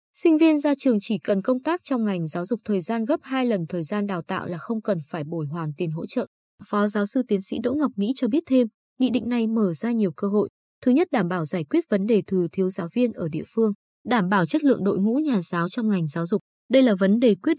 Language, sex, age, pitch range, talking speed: Vietnamese, female, 20-39, 180-250 Hz, 275 wpm